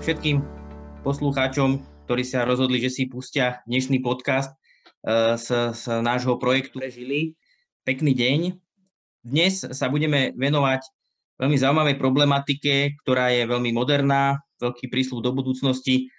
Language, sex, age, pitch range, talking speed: Slovak, male, 20-39, 125-140 Hz, 115 wpm